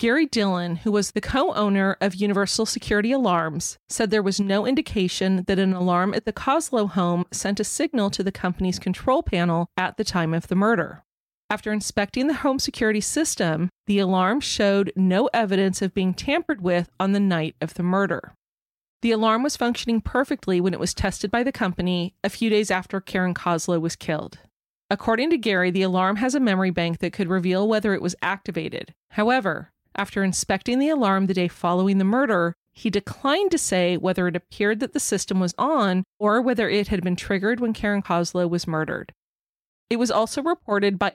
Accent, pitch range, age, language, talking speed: American, 180-225 Hz, 30-49, English, 190 wpm